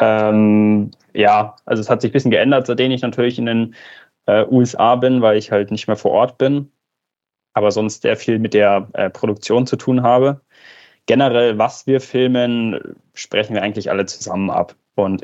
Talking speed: 185 wpm